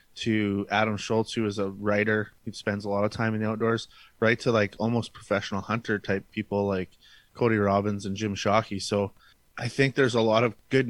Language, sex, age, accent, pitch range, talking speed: English, male, 20-39, American, 100-115 Hz, 210 wpm